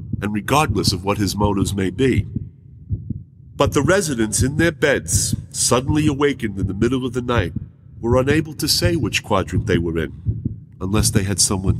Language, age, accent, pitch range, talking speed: English, 50-69, American, 105-150 Hz, 180 wpm